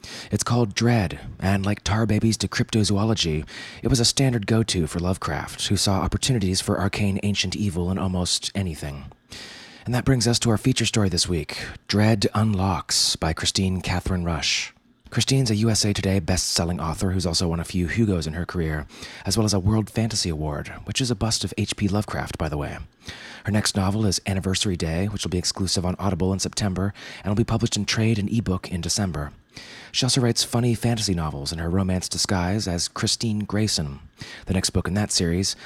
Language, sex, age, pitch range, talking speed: English, male, 30-49, 90-110 Hz, 195 wpm